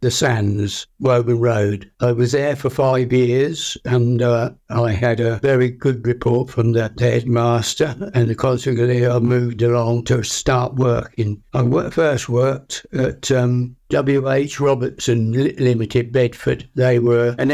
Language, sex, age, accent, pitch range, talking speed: English, male, 60-79, British, 120-135 Hz, 145 wpm